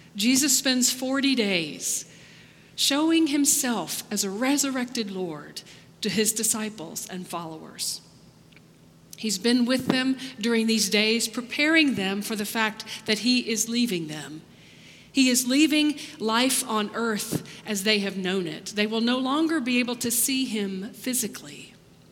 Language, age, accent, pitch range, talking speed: English, 40-59, American, 195-260 Hz, 145 wpm